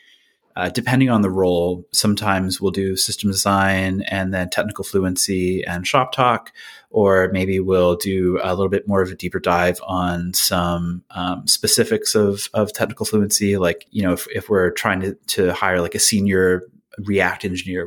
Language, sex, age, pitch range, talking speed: English, male, 30-49, 90-105 Hz, 175 wpm